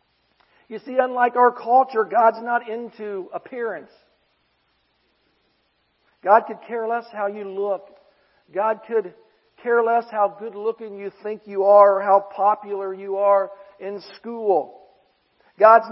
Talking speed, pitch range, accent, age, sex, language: 130 wpm, 210-250 Hz, American, 50-69, male, English